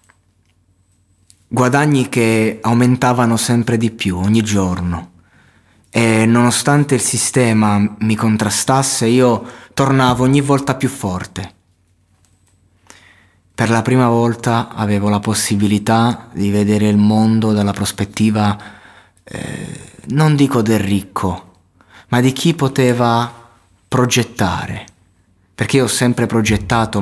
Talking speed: 105 wpm